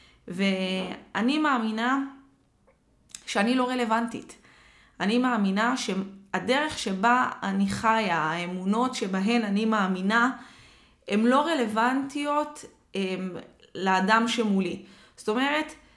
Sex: female